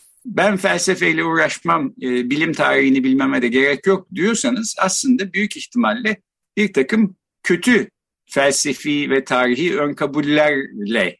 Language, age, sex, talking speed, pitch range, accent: Turkish, 50-69, male, 115 wpm, 160-240 Hz, native